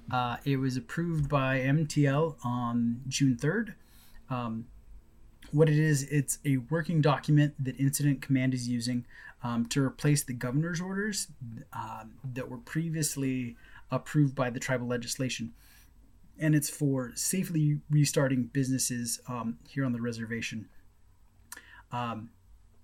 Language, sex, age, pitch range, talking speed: English, male, 20-39, 120-145 Hz, 130 wpm